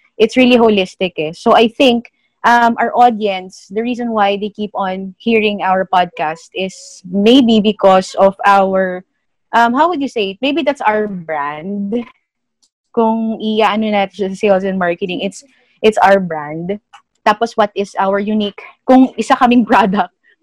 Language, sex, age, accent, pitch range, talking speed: English, female, 20-39, Filipino, 190-230 Hz, 155 wpm